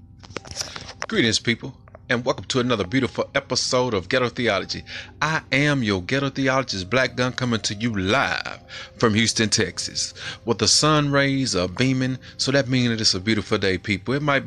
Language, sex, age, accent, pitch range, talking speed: English, male, 30-49, American, 105-130 Hz, 170 wpm